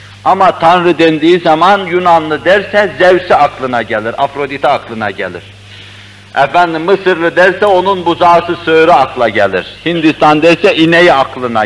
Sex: male